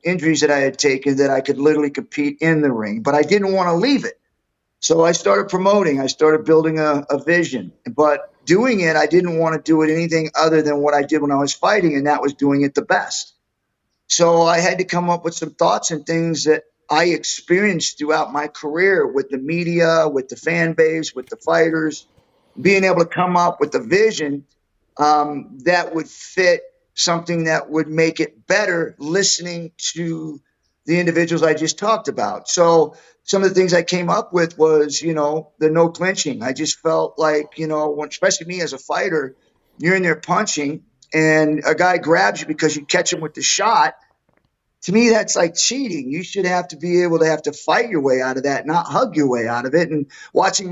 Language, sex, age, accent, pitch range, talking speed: English, male, 50-69, American, 150-175 Hz, 215 wpm